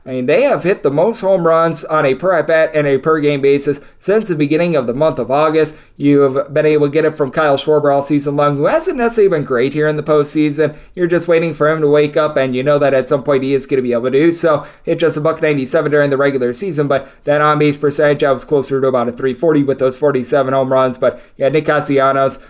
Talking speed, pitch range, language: 270 wpm, 140-170 Hz, English